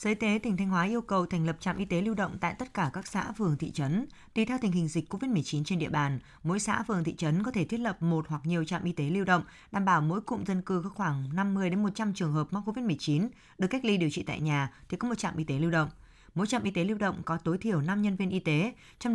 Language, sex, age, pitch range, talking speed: Vietnamese, female, 20-39, 165-215 Hz, 300 wpm